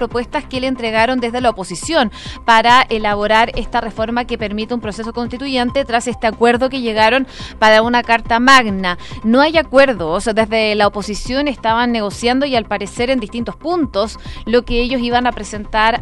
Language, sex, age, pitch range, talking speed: Spanish, female, 20-39, 215-255 Hz, 170 wpm